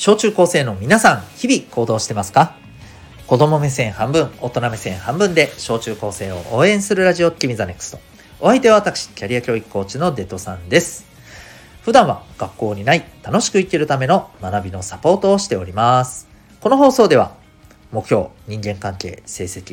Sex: male